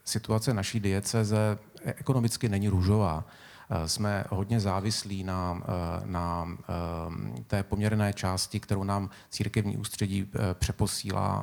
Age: 30-49